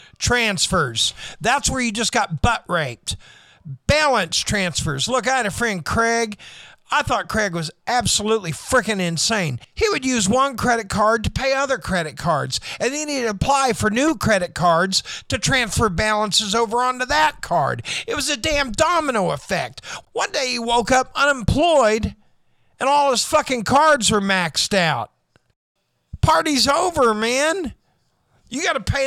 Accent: American